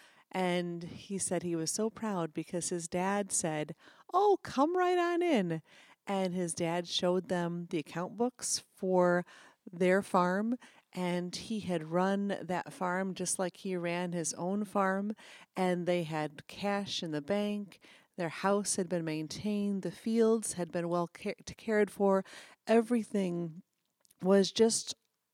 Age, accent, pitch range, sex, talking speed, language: 40-59, American, 175-215 Hz, female, 145 wpm, English